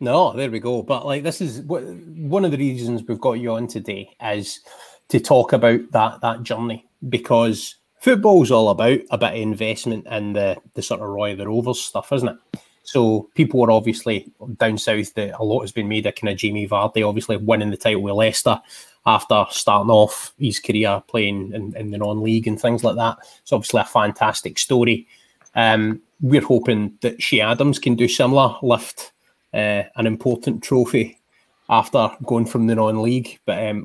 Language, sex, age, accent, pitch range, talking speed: English, male, 20-39, British, 110-135 Hz, 190 wpm